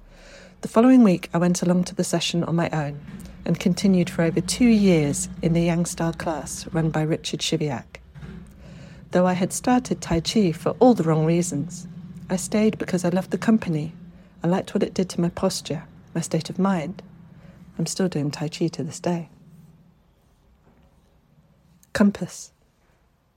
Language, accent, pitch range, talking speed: English, British, 155-185 Hz, 165 wpm